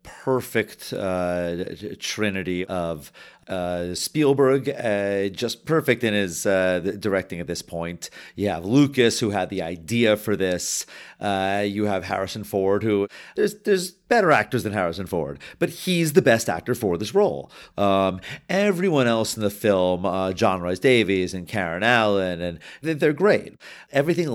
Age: 40-59